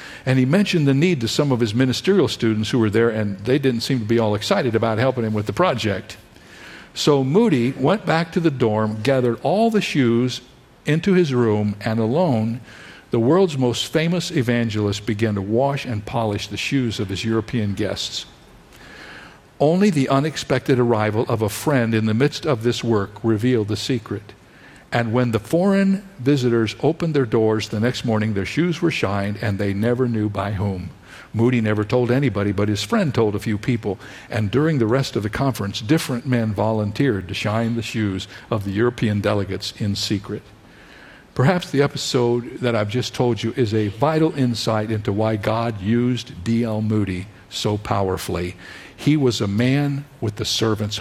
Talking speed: 180 wpm